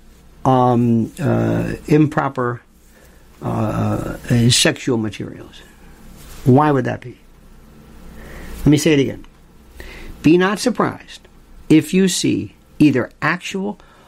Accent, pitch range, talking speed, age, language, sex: American, 115-155 Hz, 100 wpm, 50-69, English, male